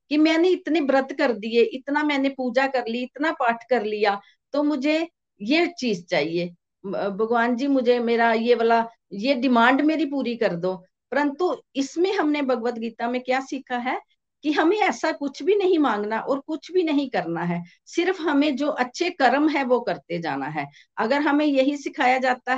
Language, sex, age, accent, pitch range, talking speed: Hindi, female, 50-69, native, 230-295 Hz, 180 wpm